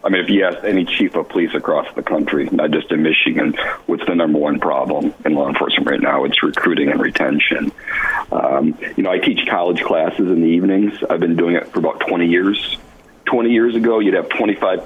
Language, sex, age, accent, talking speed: English, male, 50-69, American, 220 wpm